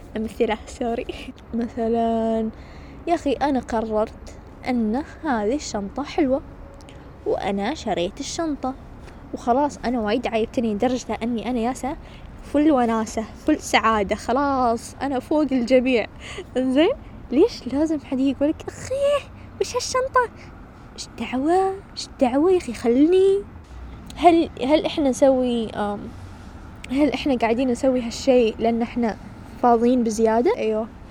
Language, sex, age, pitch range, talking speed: Arabic, female, 10-29, 225-265 Hz, 115 wpm